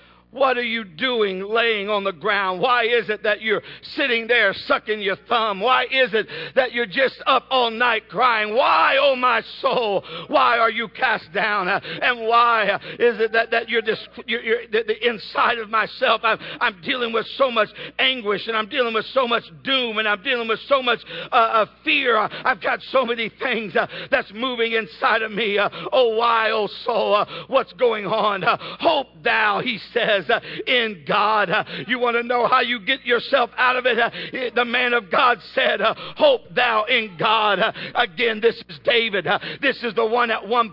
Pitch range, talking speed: 215-250 Hz, 195 wpm